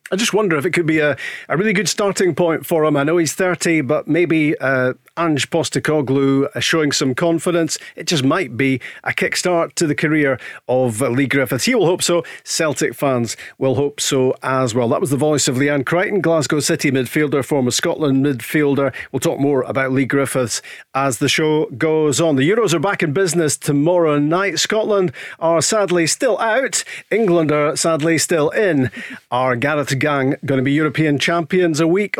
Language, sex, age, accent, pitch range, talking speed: English, male, 40-59, British, 140-170 Hz, 190 wpm